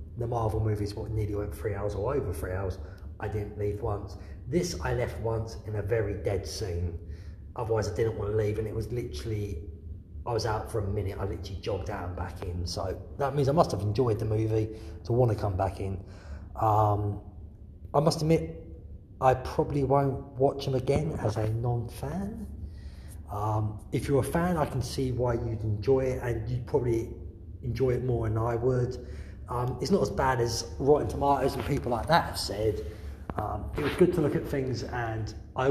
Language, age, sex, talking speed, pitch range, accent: English, 30-49, male, 200 wpm, 95-125 Hz, British